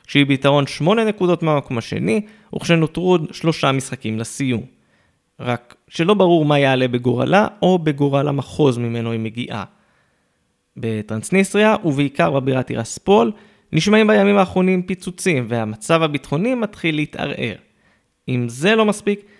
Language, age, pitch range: Hebrew, 20-39, 125-180 Hz